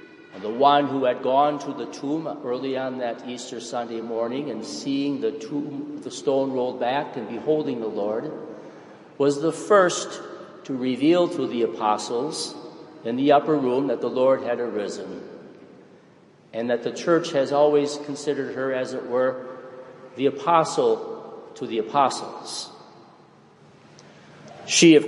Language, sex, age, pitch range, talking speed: English, male, 50-69, 130-180 Hz, 145 wpm